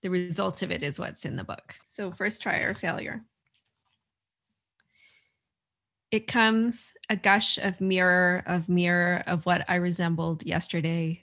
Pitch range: 165-180 Hz